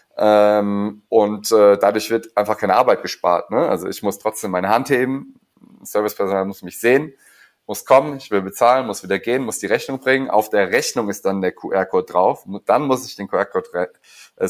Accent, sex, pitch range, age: German, male, 100-120 Hz, 30-49